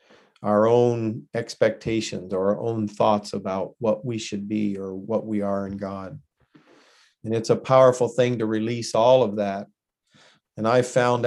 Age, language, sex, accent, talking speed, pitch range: 50-69, English, male, American, 165 wpm, 105-120 Hz